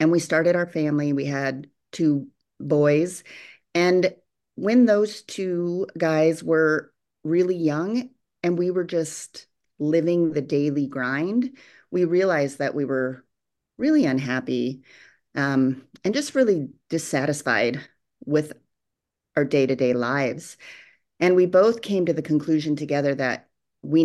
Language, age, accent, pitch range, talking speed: English, 40-59, American, 130-170 Hz, 130 wpm